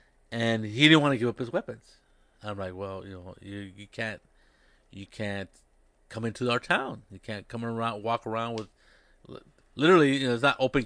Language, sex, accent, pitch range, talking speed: English, male, American, 105-125 Hz, 200 wpm